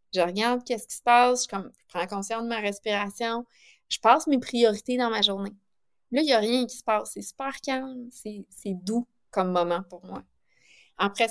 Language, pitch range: French, 195-250 Hz